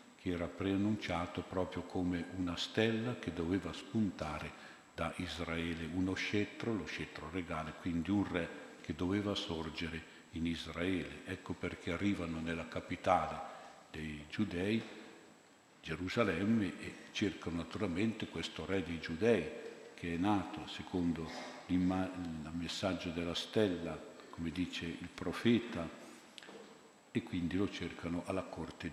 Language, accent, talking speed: Italian, native, 120 wpm